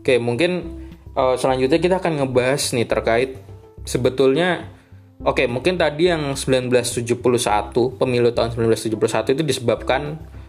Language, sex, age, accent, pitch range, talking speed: Indonesian, male, 20-39, native, 105-130 Hz, 125 wpm